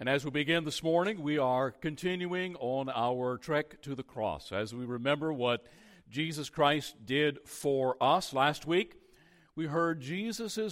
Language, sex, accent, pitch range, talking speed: English, male, American, 130-170 Hz, 160 wpm